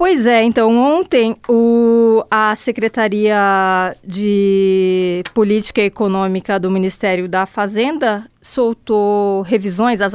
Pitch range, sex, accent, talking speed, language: 195-235 Hz, female, Brazilian, 100 wpm, Portuguese